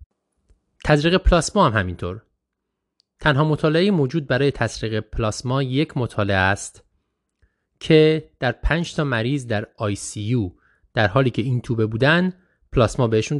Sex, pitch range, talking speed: male, 100-135 Hz, 130 wpm